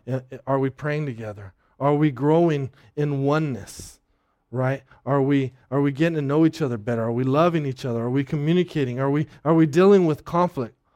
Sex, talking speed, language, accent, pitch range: male, 190 wpm, English, American, 130-170 Hz